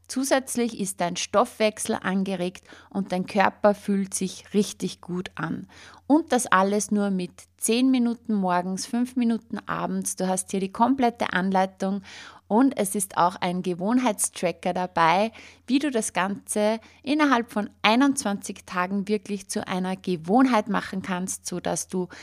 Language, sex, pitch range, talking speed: German, female, 185-225 Hz, 145 wpm